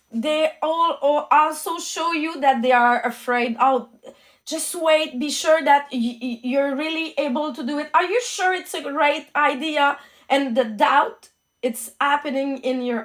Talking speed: 160 wpm